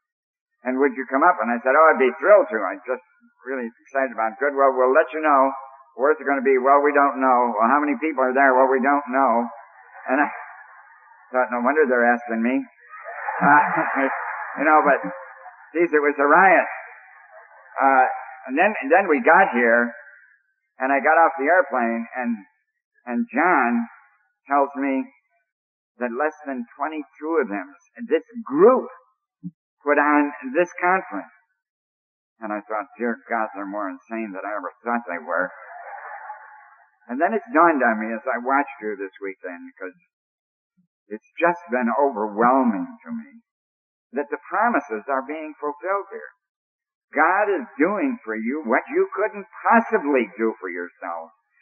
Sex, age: male, 50-69